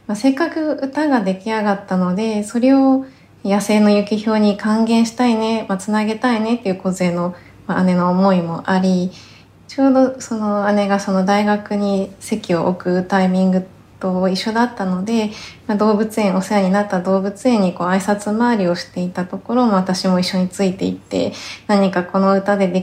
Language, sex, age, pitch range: Japanese, female, 20-39, 185-215 Hz